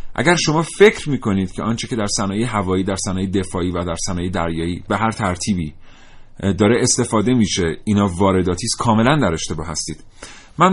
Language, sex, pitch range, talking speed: Persian, male, 100-150 Hz, 170 wpm